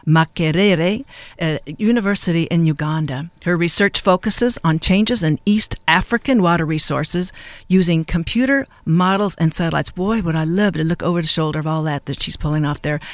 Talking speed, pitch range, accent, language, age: 170 wpm, 160-195 Hz, American, English, 50-69